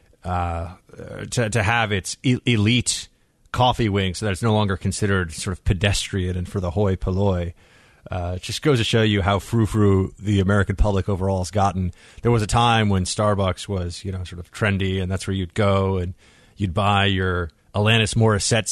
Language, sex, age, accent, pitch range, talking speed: English, male, 30-49, American, 95-110 Hz, 195 wpm